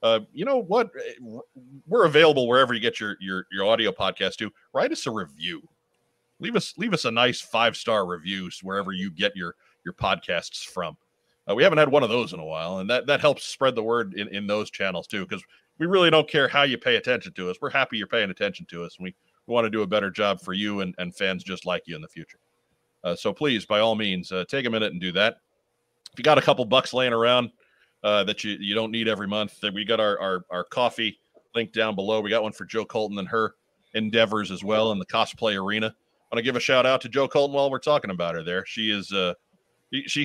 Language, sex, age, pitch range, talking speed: English, male, 40-59, 95-115 Hz, 250 wpm